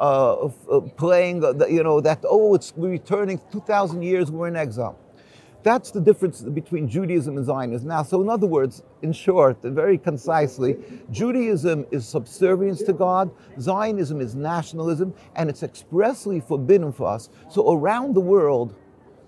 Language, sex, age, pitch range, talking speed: English, male, 50-69, 150-195 Hz, 160 wpm